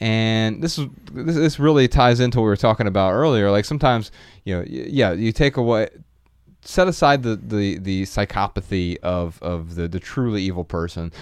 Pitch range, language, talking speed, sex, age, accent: 100-125 Hz, English, 180 wpm, male, 30-49, American